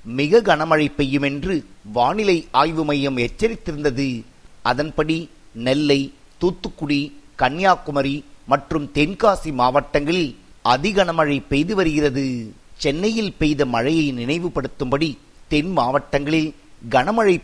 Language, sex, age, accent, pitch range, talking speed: Tamil, male, 50-69, native, 140-165 Hz, 85 wpm